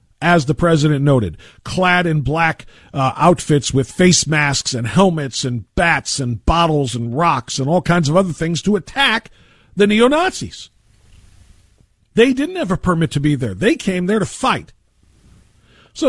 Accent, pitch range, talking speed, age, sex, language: American, 125-190 Hz, 165 wpm, 50-69, male, English